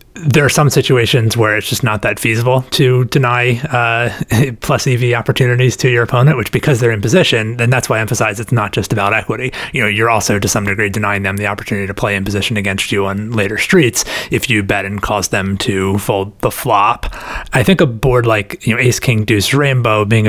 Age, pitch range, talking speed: 30-49, 105-125 Hz, 225 wpm